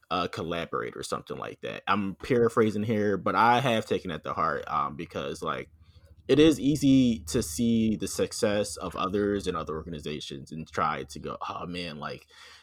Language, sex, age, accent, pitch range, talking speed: English, male, 20-39, American, 95-120 Hz, 180 wpm